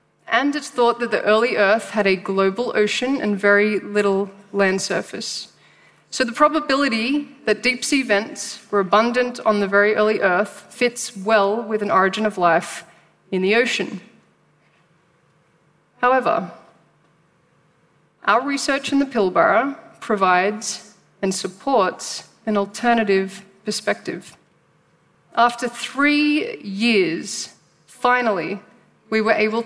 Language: English